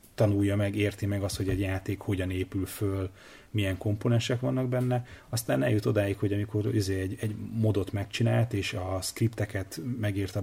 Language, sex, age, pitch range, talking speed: Hungarian, male, 30-49, 95-110 Hz, 160 wpm